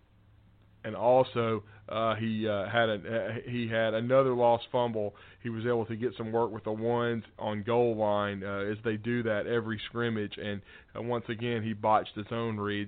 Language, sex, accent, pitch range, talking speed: English, male, American, 105-115 Hz, 195 wpm